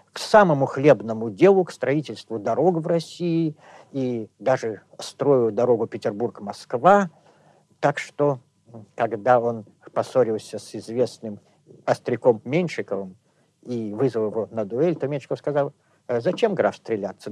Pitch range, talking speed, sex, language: 120-180 Hz, 120 wpm, male, Russian